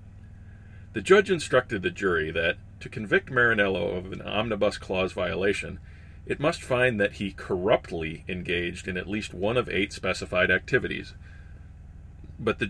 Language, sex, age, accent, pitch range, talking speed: English, male, 40-59, American, 80-100 Hz, 145 wpm